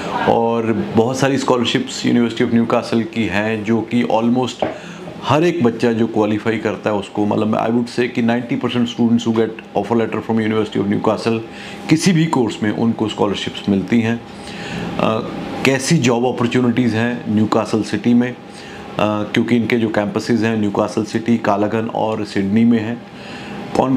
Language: Hindi